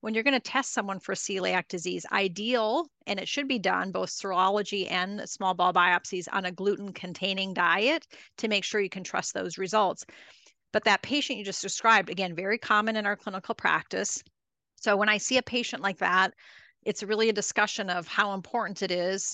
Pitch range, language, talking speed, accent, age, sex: 190-220 Hz, English, 195 wpm, American, 30-49, female